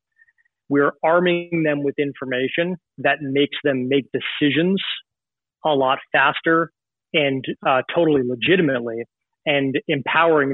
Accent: American